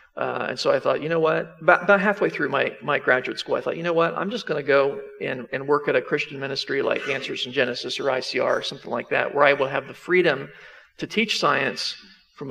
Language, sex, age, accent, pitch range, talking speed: English, male, 50-69, American, 140-175 Hz, 245 wpm